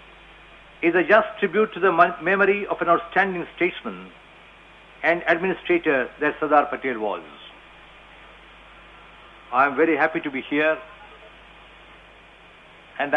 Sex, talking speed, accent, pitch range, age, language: male, 115 wpm, Indian, 150-200 Hz, 50-69, English